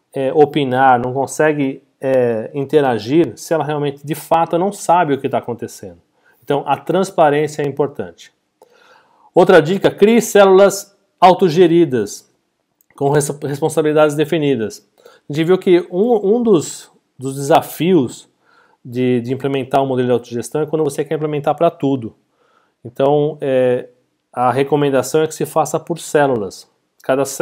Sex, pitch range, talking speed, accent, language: male, 135-165 Hz, 140 wpm, Brazilian, Portuguese